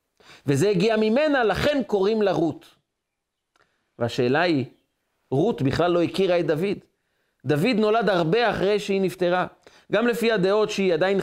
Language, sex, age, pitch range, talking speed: Hebrew, male, 40-59, 175-225 Hz, 140 wpm